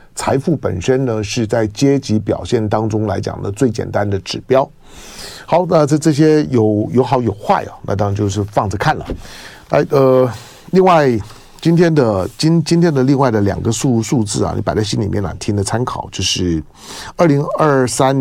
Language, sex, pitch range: Chinese, male, 105-140 Hz